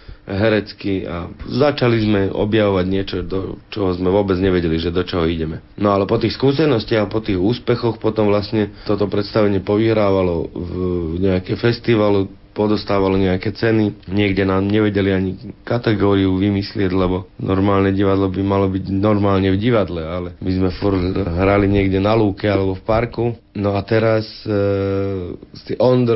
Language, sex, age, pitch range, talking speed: Slovak, male, 40-59, 95-105 Hz, 150 wpm